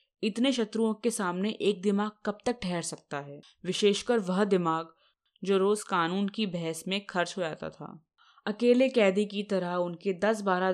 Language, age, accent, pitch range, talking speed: Hindi, 20-39, native, 170-215 Hz, 170 wpm